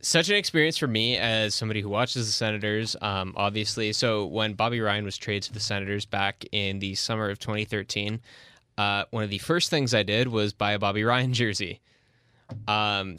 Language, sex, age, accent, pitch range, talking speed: English, male, 10-29, American, 105-120 Hz, 195 wpm